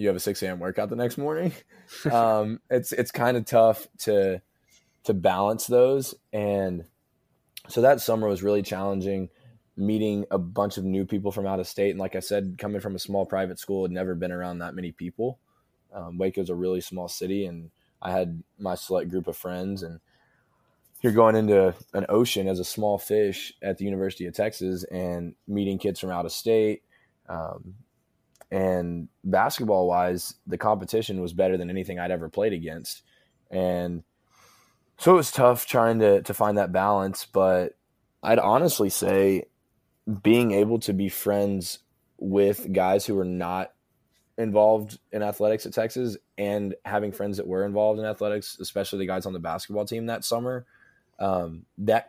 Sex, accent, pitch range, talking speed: male, American, 90-105 Hz, 175 wpm